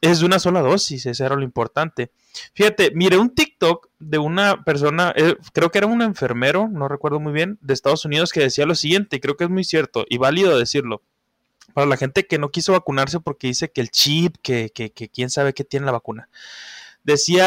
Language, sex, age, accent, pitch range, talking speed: Spanish, male, 20-39, Mexican, 135-190 Hz, 215 wpm